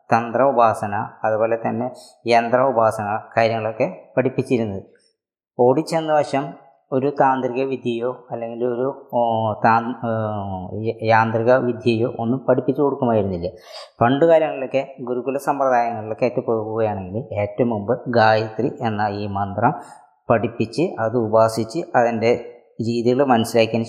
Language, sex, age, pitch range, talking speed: Malayalam, female, 20-39, 110-135 Hz, 85 wpm